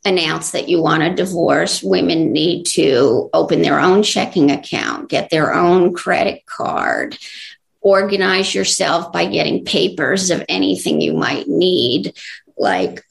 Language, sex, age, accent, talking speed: English, female, 50-69, American, 135 wpm